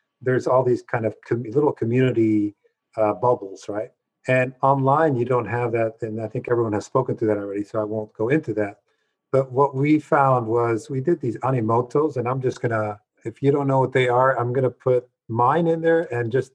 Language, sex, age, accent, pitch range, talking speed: English, male, 50-69, American, 115-140 Hz, 220 wpm